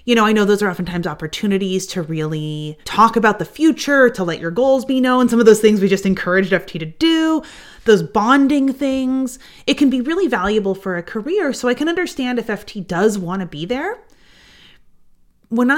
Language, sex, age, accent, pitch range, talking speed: English, female, 30-49, American, 180-255 Hz, 200 wpm